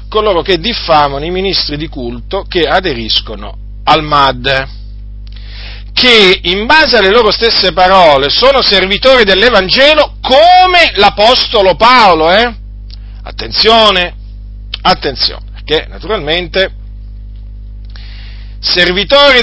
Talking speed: 95 wpm